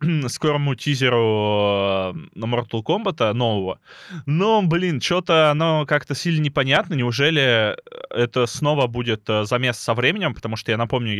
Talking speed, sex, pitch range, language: 125 wpm, male, 105-130 Hz, Russian